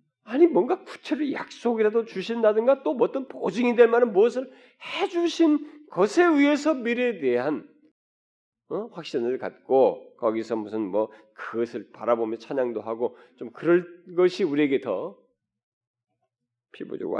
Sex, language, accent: male, Korean, native